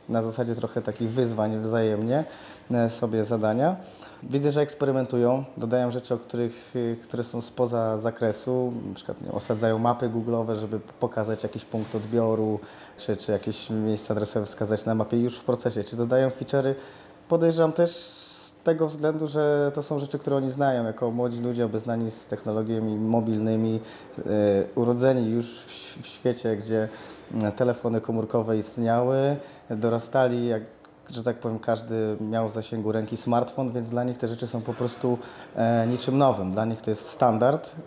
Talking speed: 155 wpm